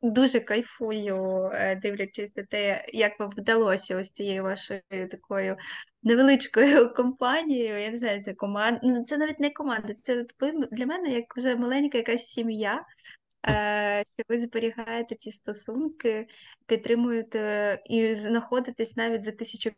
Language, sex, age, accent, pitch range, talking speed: Ukrainian, female, 20-39, native, 205-245 Hz, 125 wpm